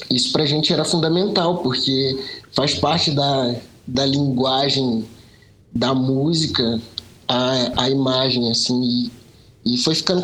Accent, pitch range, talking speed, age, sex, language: Brazilian, 125-155 Hz, 125 wpm, 20-39, male, Portuguese